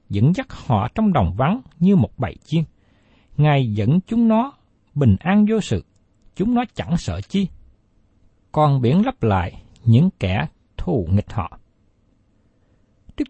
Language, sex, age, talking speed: Vietnamese, male, 60-79, 150 wpm